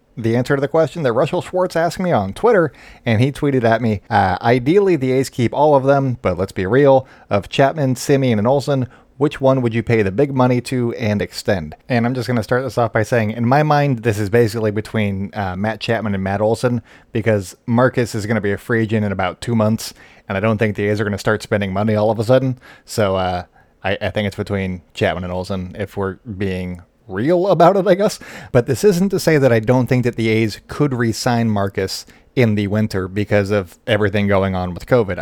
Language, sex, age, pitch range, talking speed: English, male, 30-49, 100-130 Hz, 240 wpm